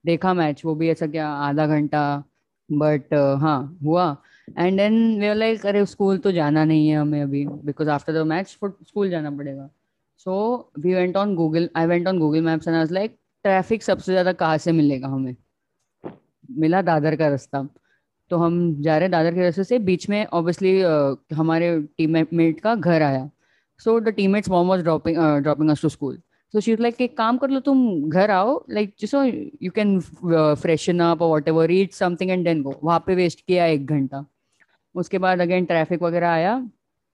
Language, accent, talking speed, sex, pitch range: English, Indian, 160 wpm, female, 155-195 Hz